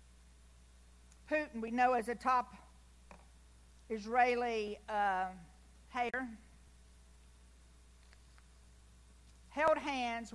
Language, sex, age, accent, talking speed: English, female, 50-69, American, 65 wpm